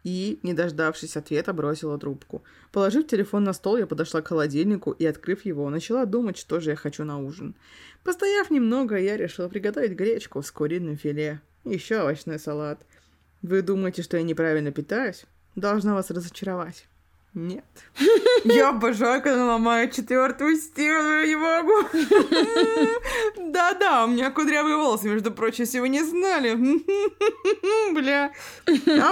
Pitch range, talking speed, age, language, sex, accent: 170-275 Hz, 135 wpm, 20-39, Russian, female, native